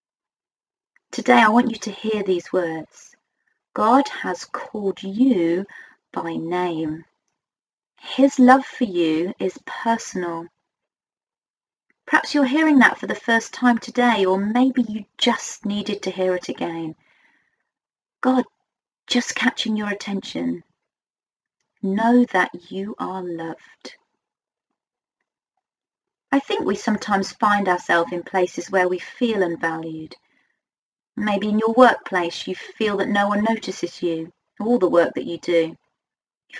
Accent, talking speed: British, 130 wpm